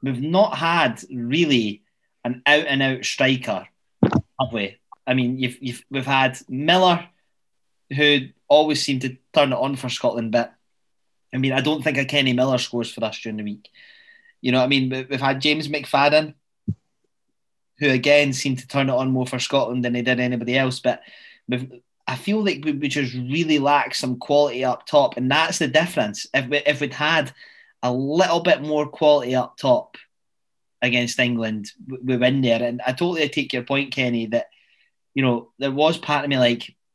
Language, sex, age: English, male, 20-39